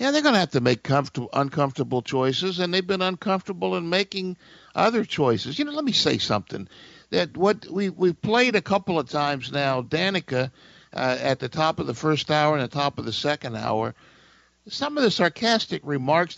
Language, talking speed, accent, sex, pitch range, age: English, 200 wpm, American, male, 130-185 Hz, 50-69